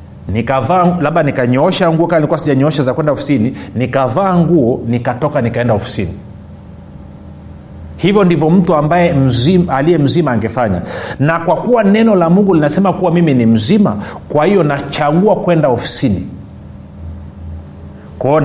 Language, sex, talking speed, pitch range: Swahili, male, 125 wpm, 115-180 Hz